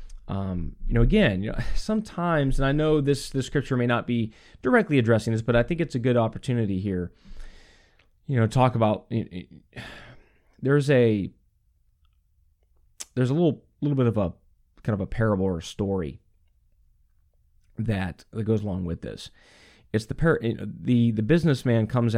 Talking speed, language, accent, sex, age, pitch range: 170 wpm, English, American, male, 20-39, 90-120 Hz